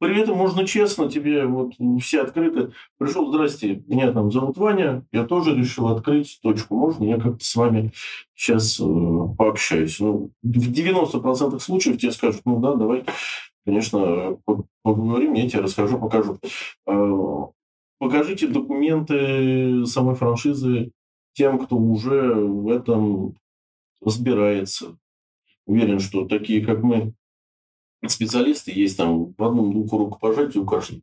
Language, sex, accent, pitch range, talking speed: Russian, male, native, 105-135 Hz, 130 wpm